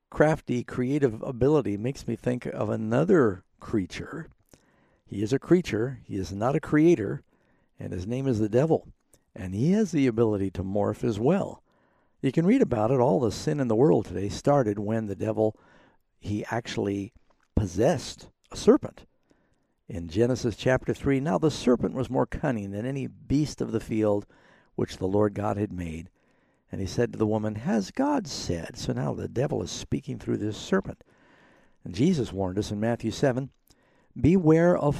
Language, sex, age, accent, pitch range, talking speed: English, male, 60-79, American, 105-135 Hz, 175 wpm